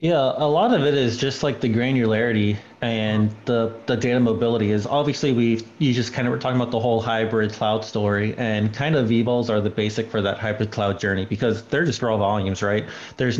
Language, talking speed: English, 220 wpm